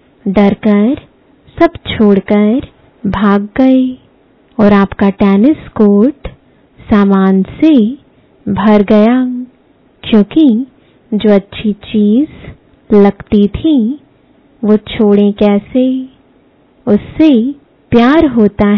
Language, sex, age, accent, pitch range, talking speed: English, female, 20-39, Indian, 205-255 Hz, 80 wpm